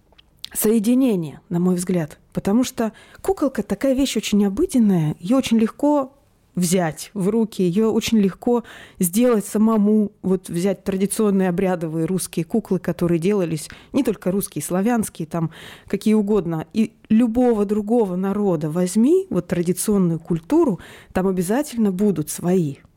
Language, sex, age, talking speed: Russian, female, 20-39, 130 wpm